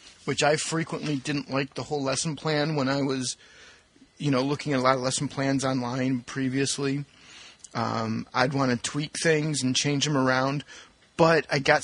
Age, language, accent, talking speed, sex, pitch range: 30-49, English, American, 180 wpm, male, 130-160 Hz